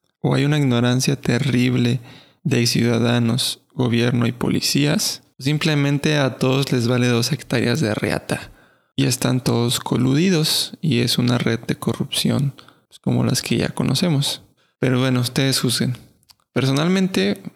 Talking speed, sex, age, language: 135 wpm, male, 20-39, Spanish